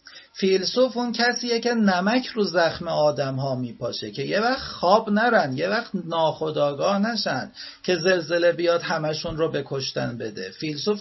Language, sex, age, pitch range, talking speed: Persian, male, 40-59, 160-220 Hz, 145 wpm